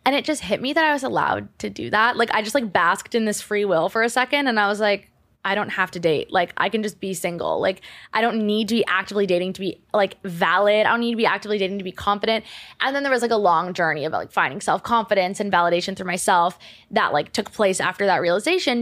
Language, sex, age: English, female, 20-39